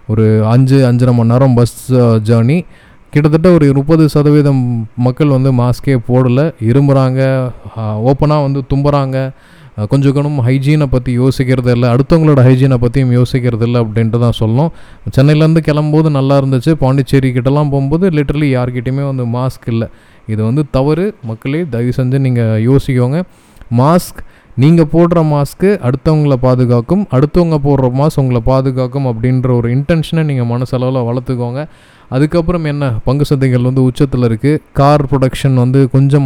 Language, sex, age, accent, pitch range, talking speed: Tamil, male, 20-39, native, 125-150 Hz, 130 wpm